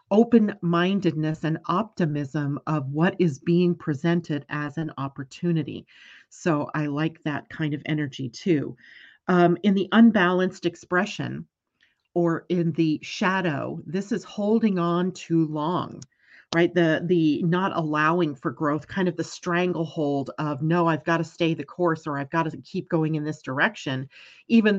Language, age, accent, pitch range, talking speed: English, 40-59, American, 150-175 Hz, 150 wpm